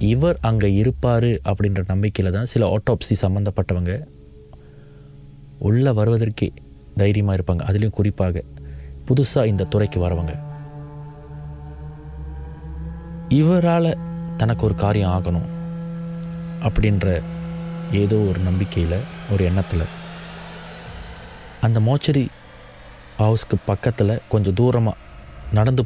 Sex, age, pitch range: male, 30-49, 80-115 Hz